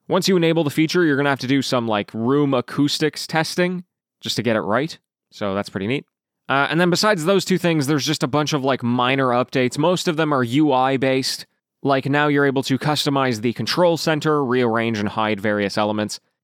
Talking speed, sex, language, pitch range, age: 215 wpm, male, English, 125-160 Hz, 20-39